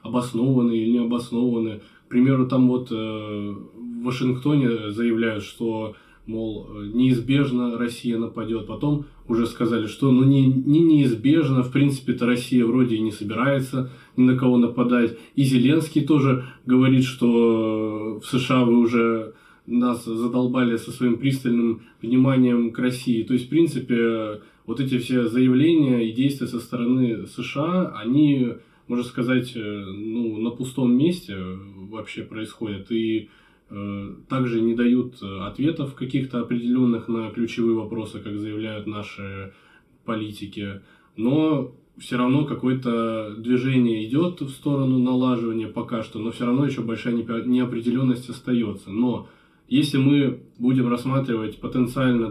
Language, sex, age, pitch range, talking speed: Russian, male, 20-39, 115-130 Hz, 130 wpm